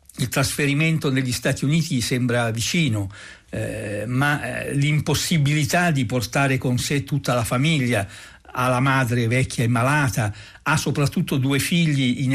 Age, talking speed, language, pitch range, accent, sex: 60-79, 130 wpm, Italian, 115-140 Hz, native, male